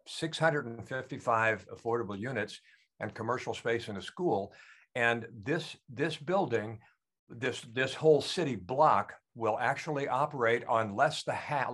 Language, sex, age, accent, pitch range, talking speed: English, male, 60-79, American, 110-145 Hz, 130 wpm